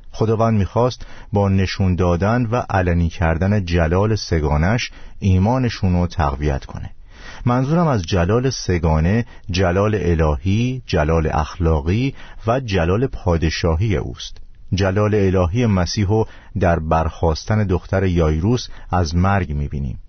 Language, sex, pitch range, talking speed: Persian, male, 85-105 Hz, 110 wpm